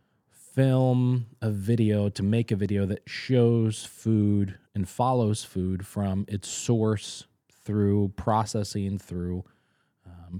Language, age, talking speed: English, 20-39, 115 wpm